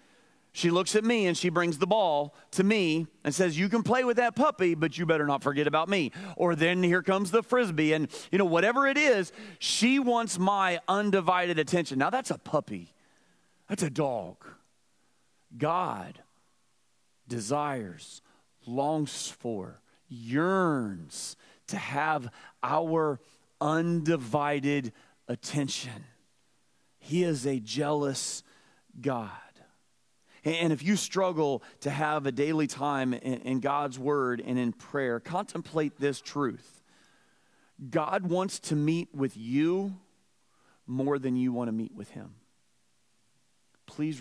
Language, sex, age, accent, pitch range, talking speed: English, male, 30-49, American, 125-180 Hz, 135 wpm